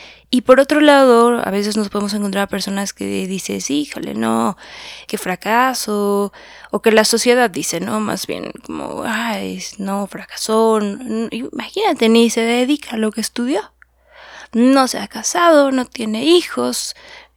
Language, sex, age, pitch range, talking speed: Spanish, female, 20-39, 200-250 Hz, 150 wpm